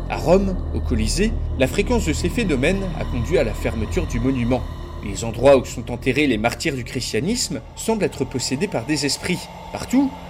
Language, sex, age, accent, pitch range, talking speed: French, male, 30-49, French, 110-160 Hz, 185 wpm